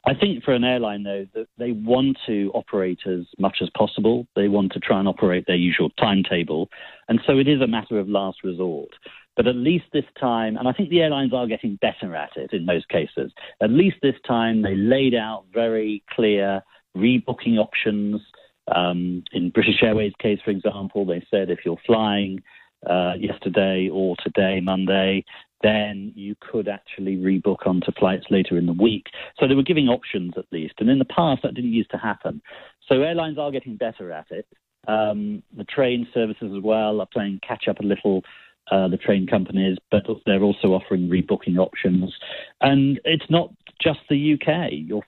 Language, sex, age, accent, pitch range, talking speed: English, male, 40-59, British, 95-120 Hz, 190 wpm